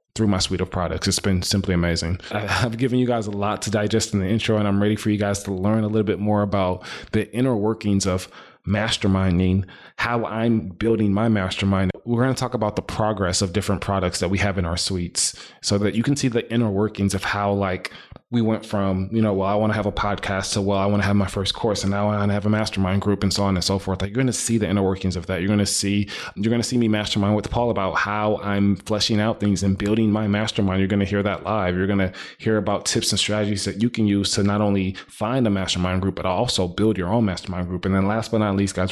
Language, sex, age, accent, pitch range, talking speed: English, male, 20-39, American, 95-110 Hz, 270 wpm